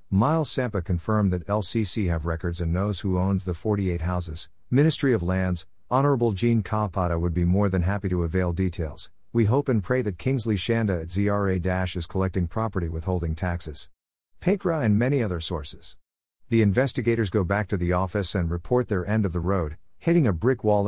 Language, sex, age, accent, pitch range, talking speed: English, male, 50-69, American, 90-115 Hz, 185 wpm